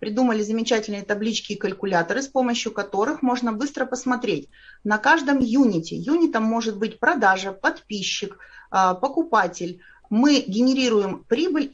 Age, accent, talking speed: 30-49, native, 120 wpm